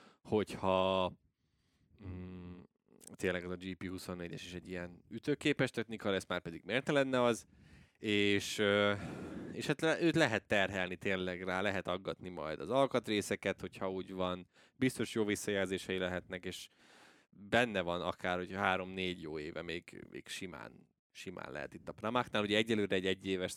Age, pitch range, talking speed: 20-39, 90-105 Hz, 155 wpm